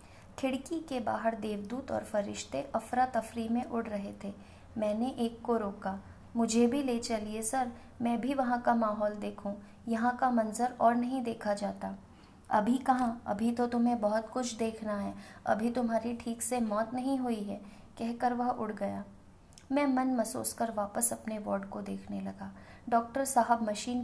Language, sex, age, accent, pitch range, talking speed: Hindi, female, 20-39, native, 200-235 Hz, 170 wpm